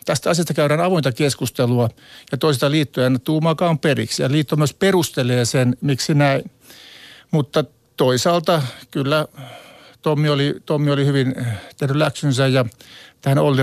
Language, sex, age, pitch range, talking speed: Finnish, male, 50-69, 125-145 Hz, 135 wpm